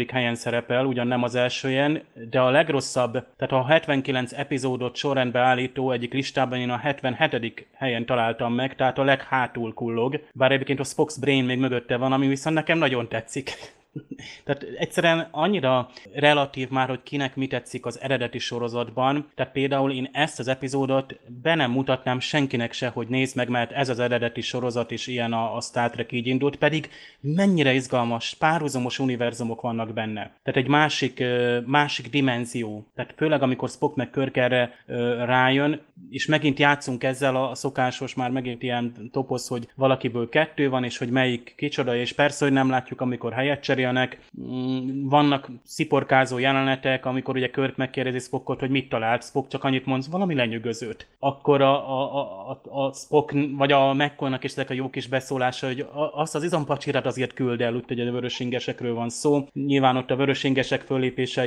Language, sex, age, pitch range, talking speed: Hungarian, male, 30-49, 125-140 Hz, 170 wpm